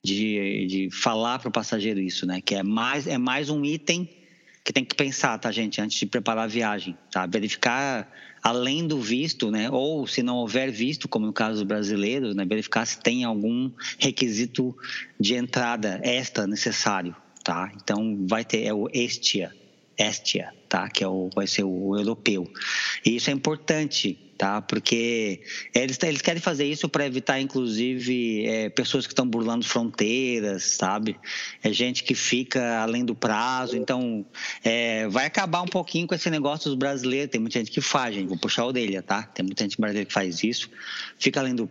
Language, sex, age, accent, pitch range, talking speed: Portuguese, male, 20-39, Brazilian, 110-130 Hz, 185 wpm